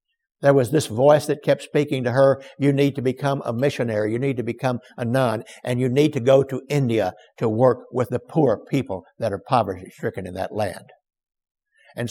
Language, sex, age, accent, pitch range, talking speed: English, male, 60-79, American, 120-155 Hz, 205 wpm